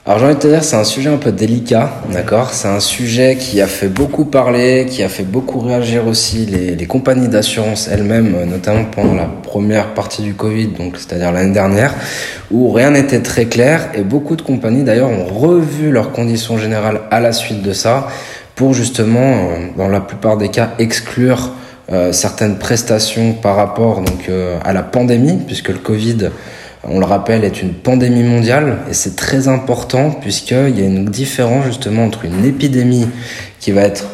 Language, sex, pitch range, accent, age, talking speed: French, male, 100-130 Hz, French, 20-39, 190 wpm